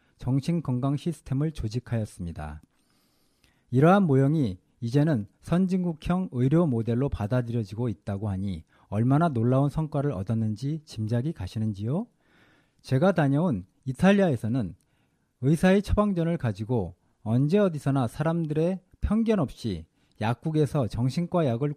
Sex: male